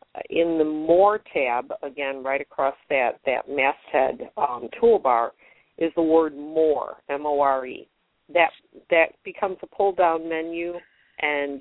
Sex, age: female, 50-69